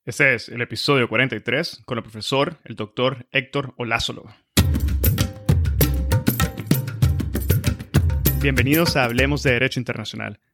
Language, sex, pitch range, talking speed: Spanish, male, 115-150 Hz, 100 wpm